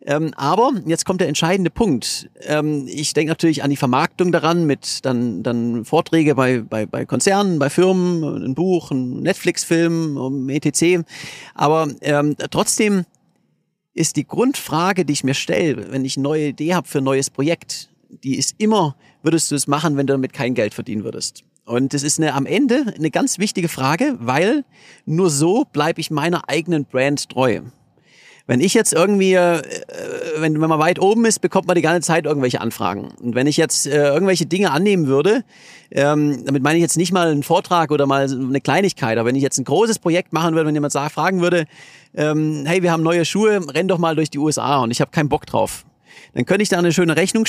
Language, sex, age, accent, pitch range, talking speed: German, male, 40-59, German, 140-180 Hz, 200 wpm